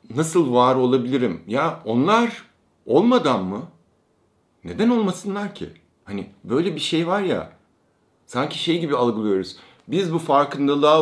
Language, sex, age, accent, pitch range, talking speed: Turkish, male, 50-69, native, 115-165 Hz, 125 wpm